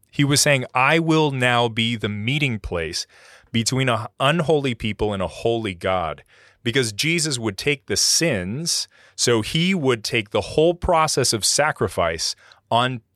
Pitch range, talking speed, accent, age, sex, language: 100-135 Hz, 155 wpm, American, 30-49, male, English